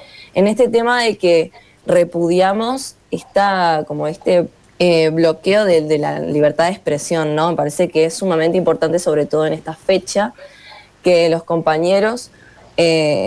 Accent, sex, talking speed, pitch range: Argentinian, female, 150 wpm, 160-195 Hz